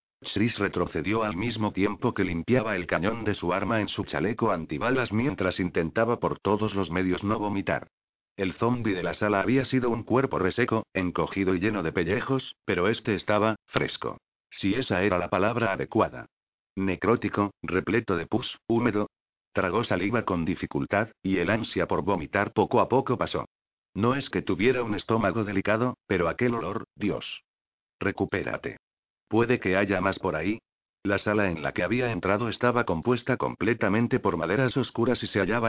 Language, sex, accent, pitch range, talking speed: Spanish, male, Spanish, 95-115 Hz, 170 wpm